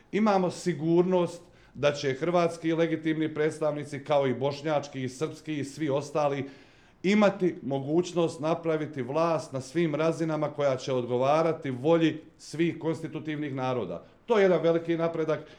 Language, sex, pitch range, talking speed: Croatian, male, 135-165 Hz, 135 wpm